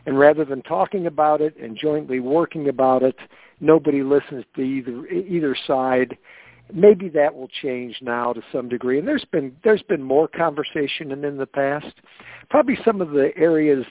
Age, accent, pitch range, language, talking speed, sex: 60-79, American, 125-150 Hz, English, 175 wpm, male